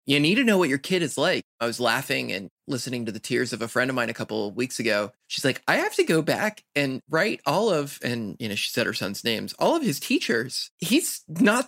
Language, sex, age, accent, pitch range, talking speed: English, male, 20-39, American, 120-165 Hz, 265 wpm